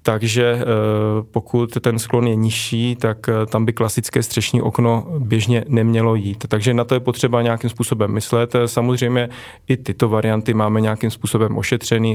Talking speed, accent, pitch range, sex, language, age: 155 wpm, native, 110-120 Hz, male, Czech, 30-49